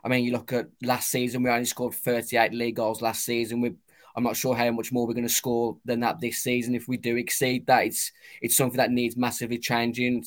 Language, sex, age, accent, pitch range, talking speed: English, male, 20-39, British, 120-130 Hz, 245 wpm